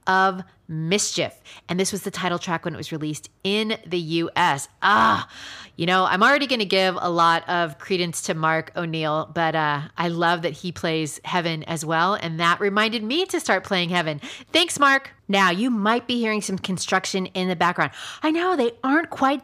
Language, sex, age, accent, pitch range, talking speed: English, female, 30-49, American, 175-235 Hz, 200 wpm